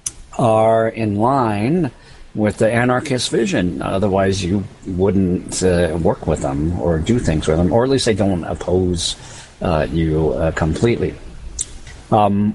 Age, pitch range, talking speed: 50-69, 90-110 Hz, 145 wpm